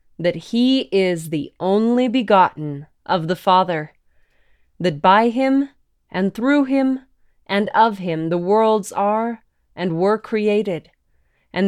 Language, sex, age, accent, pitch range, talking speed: English, female, 20-39, American, 170-225 Hz, 130 wpm